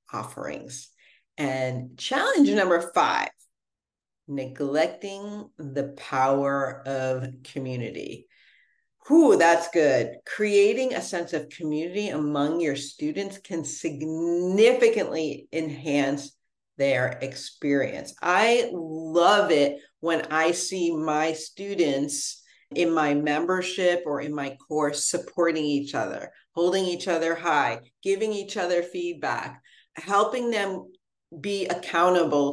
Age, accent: 50-69, American